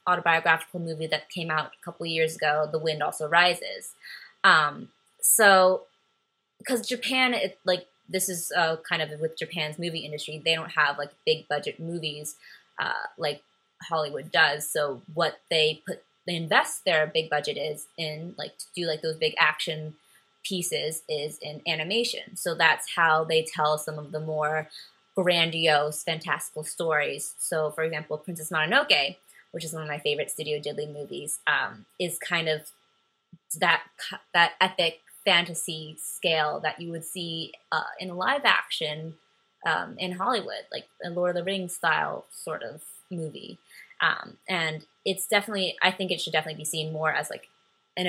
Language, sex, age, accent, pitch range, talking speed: English, female, 20-39, American, 155-180 Hz, 165 wpm